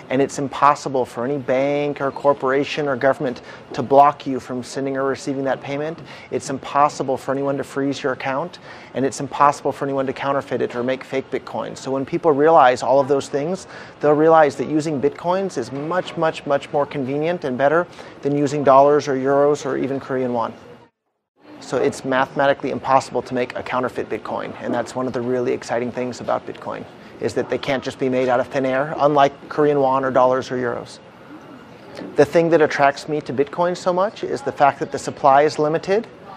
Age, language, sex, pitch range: 30-49, Korean, male, 135-160 Hz